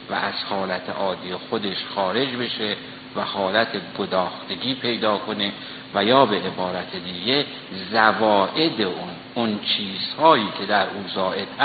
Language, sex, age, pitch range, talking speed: Persian, male, 60-79, 100-130 Hz, 125 wpm